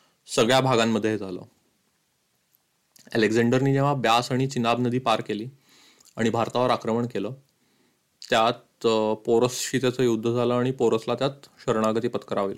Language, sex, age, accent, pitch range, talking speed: Marathi, male, 30-49, native, 120-145 Hz, 120 wpm